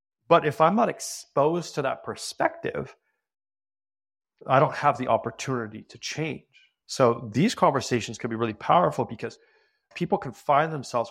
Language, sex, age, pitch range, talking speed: English, male, 30-49, 110-145 Hz, 145 wpm